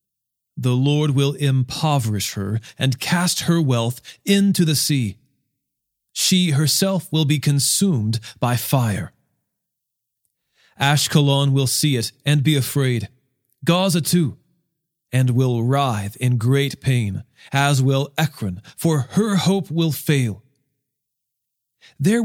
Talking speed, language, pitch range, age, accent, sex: 115 wpm, English, 125-155 Hz, 40-59, American, male